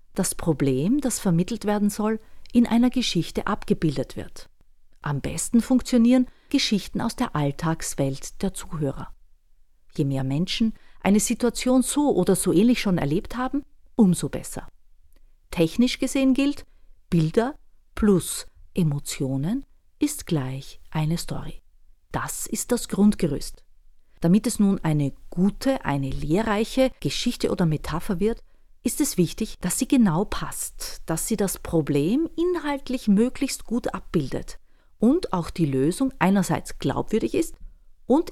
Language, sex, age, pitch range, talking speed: German, female, 40-59, 155-245 Hz, 130 wpm